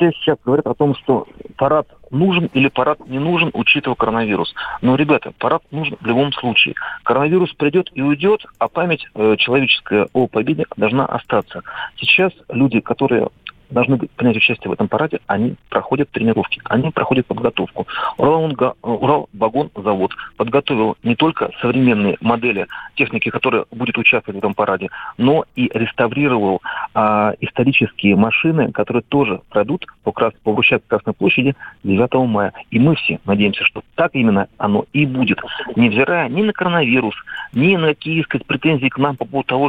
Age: 40-59